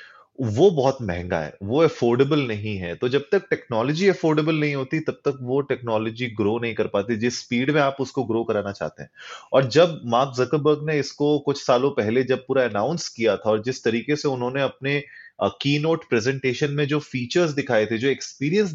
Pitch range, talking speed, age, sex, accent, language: 115-155 Hz, 200 wpm, 30-49, male, native, Hindi